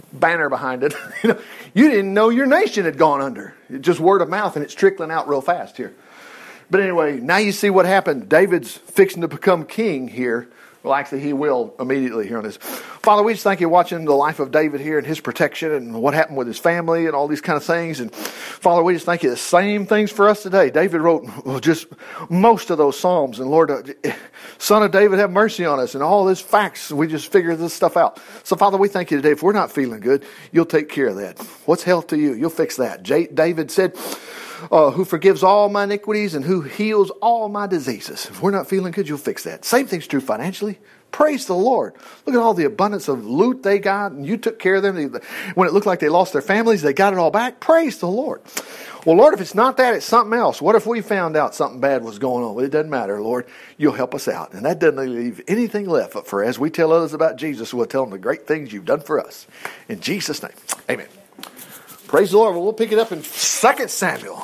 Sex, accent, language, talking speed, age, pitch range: male, American, English, 240 wpm, 50-69, 150-205 Hz